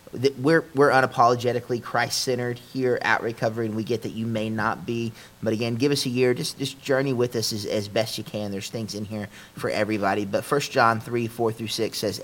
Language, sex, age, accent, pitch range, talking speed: English, male, 30-49, American, 105-125 Hz, 230 wpm